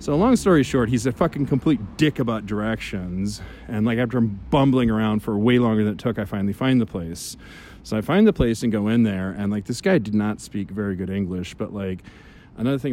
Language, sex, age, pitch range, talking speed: English, male, 30-49, 100-120 Hz, 230 wpm